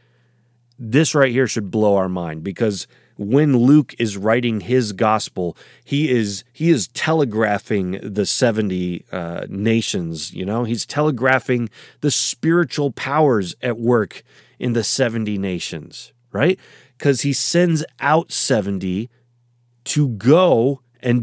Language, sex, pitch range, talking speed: English, male, 115-150 Hz, 125 wpm